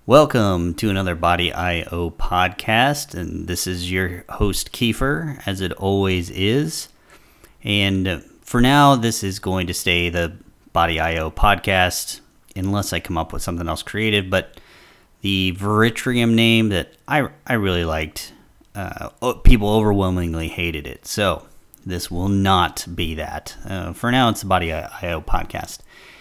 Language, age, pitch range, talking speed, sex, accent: English, 30-49, 85-105 Hz, 145 wpm, male, American